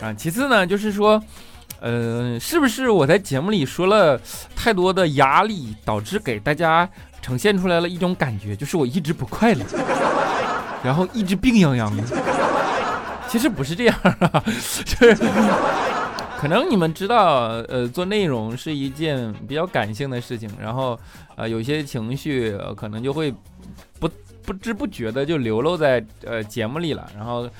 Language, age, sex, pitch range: Chinese, 20-39, male, 120-195 Hz